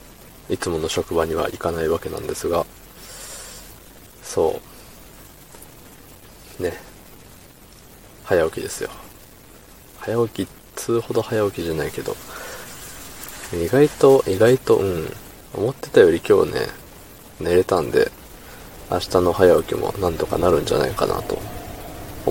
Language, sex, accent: Japanese, male, native